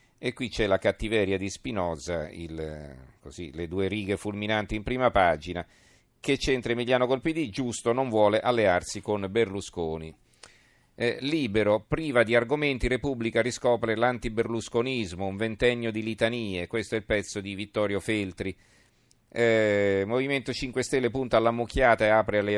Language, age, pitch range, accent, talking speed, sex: Italian, 40-59, 100-120 Hz, native, 145 wpm, male